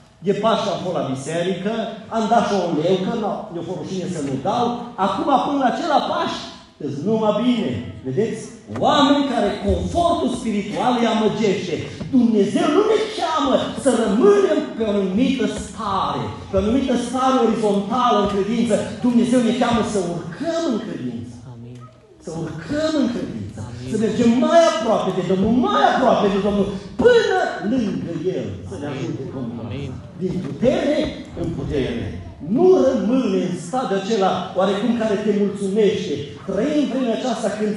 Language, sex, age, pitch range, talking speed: Romanian, male, 40-59, 190-260 Hz, 145 wpm